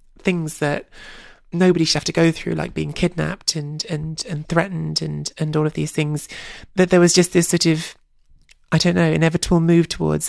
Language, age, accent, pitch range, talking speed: English, 20-39, British, 155-175 Hz, 200 wpm